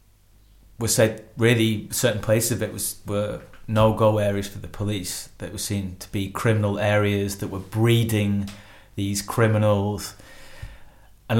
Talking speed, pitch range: 140 wpm, 100-110 Hz